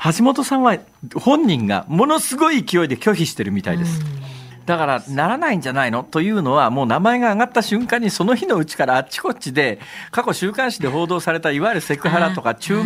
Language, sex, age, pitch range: Japanese, male, 50-69, 145-220 Hz